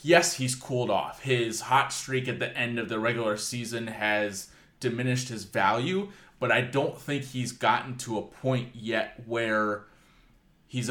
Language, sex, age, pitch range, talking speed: English, male, 20-39, 110-130 Hz, 165 wpm